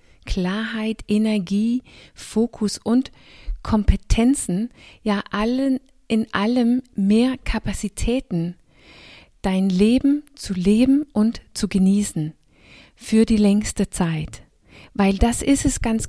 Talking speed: 100 wpm